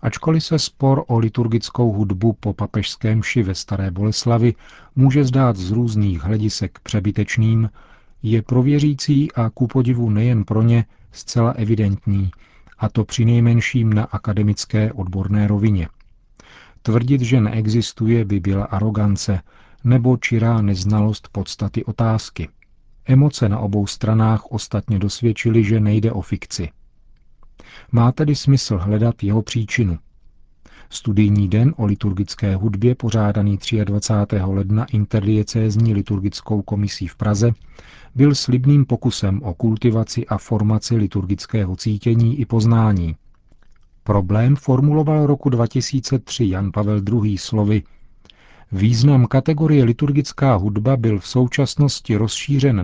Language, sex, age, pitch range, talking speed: Czech, male, 40-59, 105-120 Hz, 115 wpm